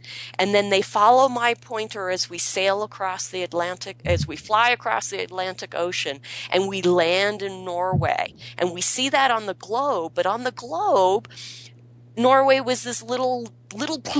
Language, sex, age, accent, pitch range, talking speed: English, female, 40-59, American, 175-225 Hz, 170 wpm